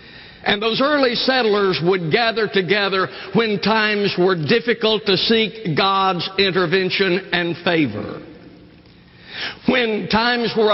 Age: 60-79